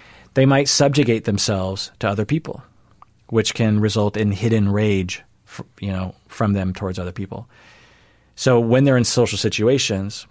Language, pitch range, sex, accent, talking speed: English, 95-115 Hz, male, American, 150 wpm